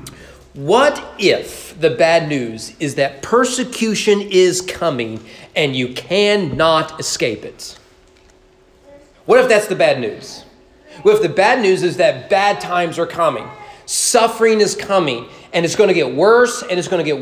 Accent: American